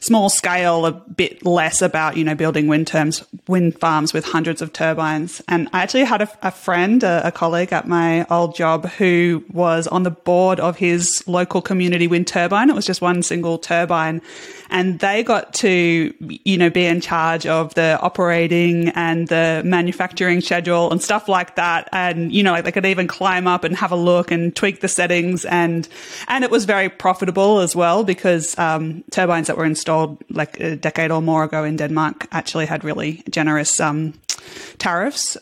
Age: 20-39